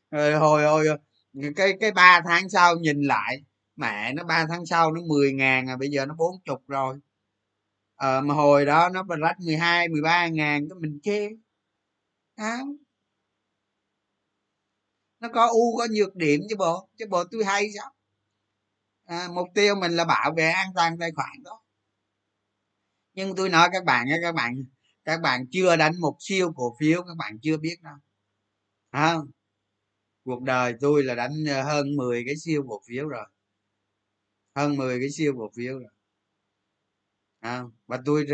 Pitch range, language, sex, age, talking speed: 120-170 Hz, Vietnamese, male, 20-39, 175 wpm